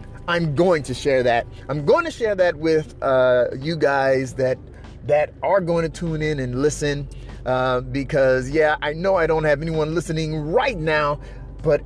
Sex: male